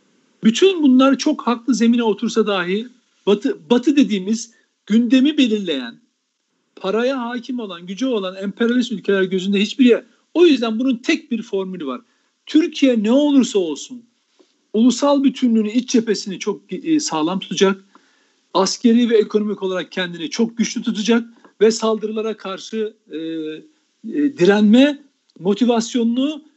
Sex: male